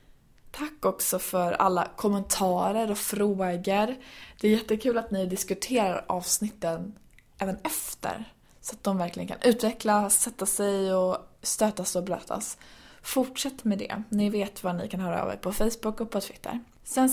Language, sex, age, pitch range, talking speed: Swedish, female, 20-39, 180-220 Hz, 160 wpm